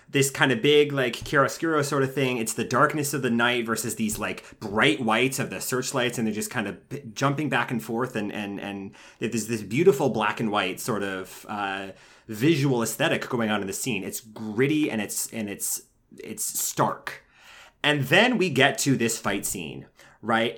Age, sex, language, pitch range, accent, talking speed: 30-49, male, English, 110-140 Hz, American, 200 wpm